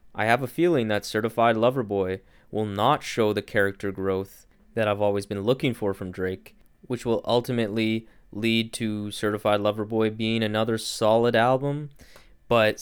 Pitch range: 105-130 Hz